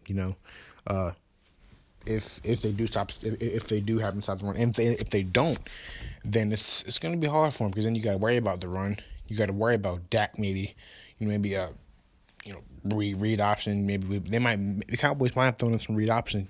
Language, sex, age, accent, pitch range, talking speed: English, male, 20-39, American, 100-110 Hz, 255 wpm